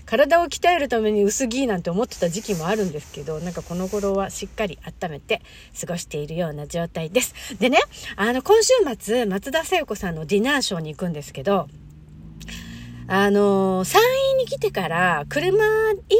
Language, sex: Japanese, female